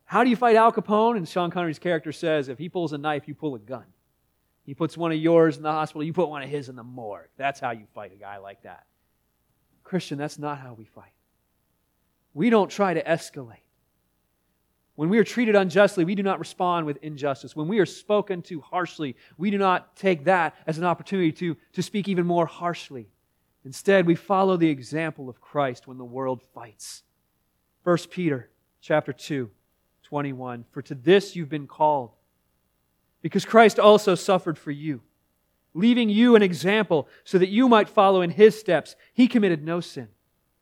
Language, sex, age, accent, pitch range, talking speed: English, male, 30-49, American, 115-180 Hz, 190 wpm